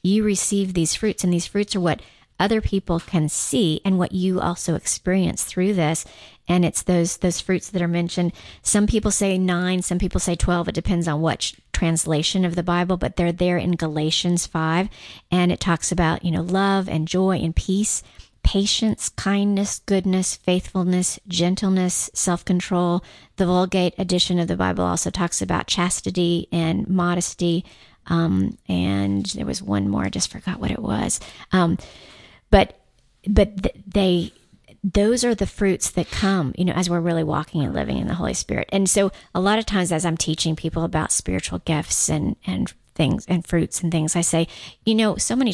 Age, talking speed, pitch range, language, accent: 40-59, 185 wpm, 170-190 Hz, English, American